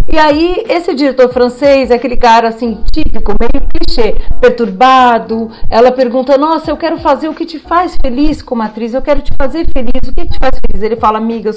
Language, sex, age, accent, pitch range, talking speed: Portuguese, female, 40-59, Brazilian, 205-265 Hz, 200 wpm